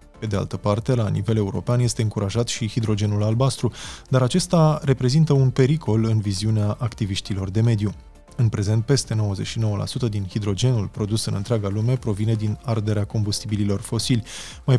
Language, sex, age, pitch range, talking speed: Romanian, male, 20-39, 105-125 Hz, 155 wpm